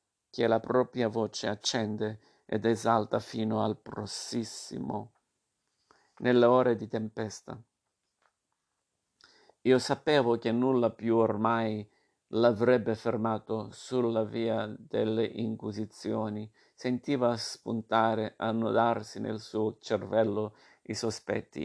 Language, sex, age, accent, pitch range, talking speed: Italian, male, 50-69, native, 110-120 Hz, 95 wpm